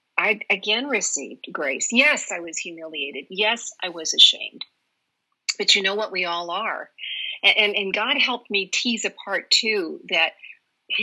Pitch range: 185-245 Hz